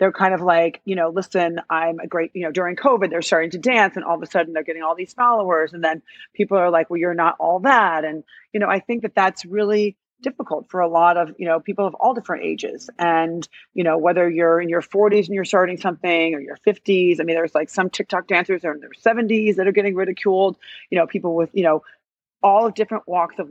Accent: American